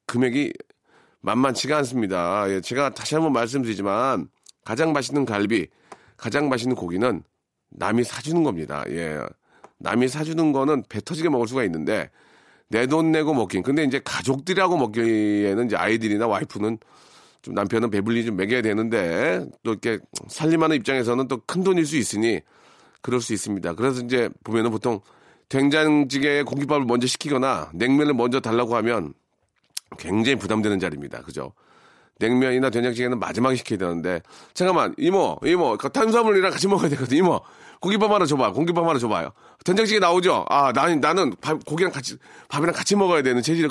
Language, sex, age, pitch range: Korean, male, 40-59, 115-155 Hz